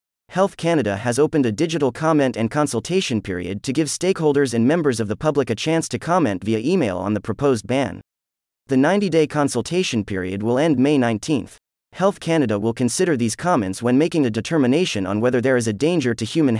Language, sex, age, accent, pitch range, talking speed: English, male, 30-49, American, 105-160 Hz, 195 wpm